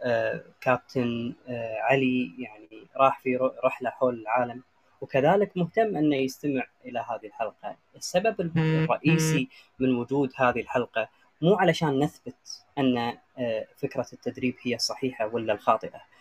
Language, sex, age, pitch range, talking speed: Arabic, female, 30-49, 130-165 Hz, 125 wpm